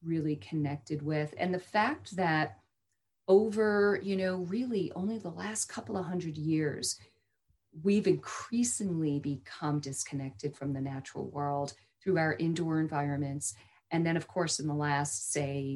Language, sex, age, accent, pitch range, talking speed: English, female, 40-59, American, 140-175 Hz, 145 wpm